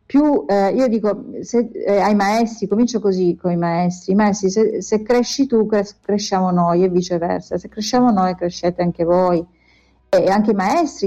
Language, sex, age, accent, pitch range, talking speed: Italian, female, 40-59, native, 185-220 Hz, 180 wpm